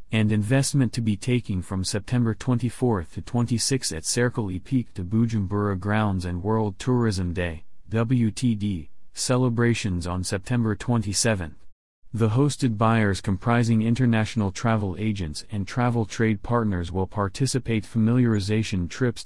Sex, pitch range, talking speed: male, 95-115 Hz, 130 wpm